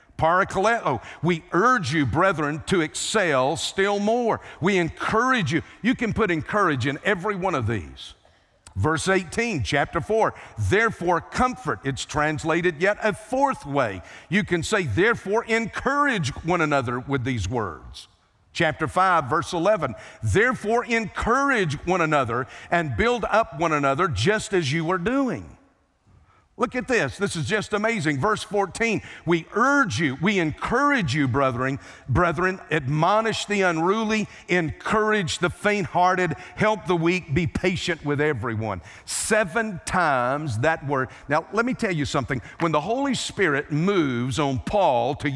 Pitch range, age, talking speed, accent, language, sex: 145-215 Hz, 50-69, 145 wpm, American, English, male